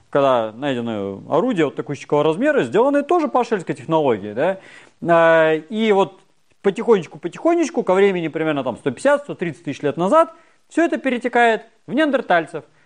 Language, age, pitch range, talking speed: Russian, 30-49, 150-245 Hz, 130 wpm